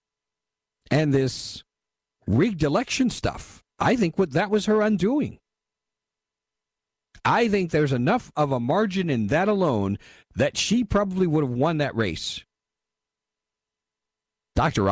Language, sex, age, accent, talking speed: English, male, 50-69, American, 120 wpm